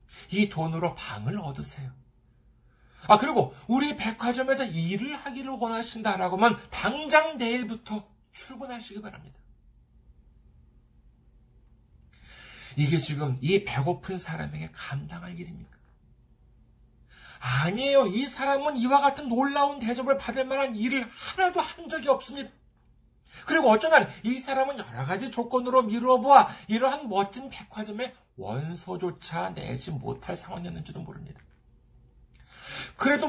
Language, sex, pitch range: Korean, male, 180-275 Hz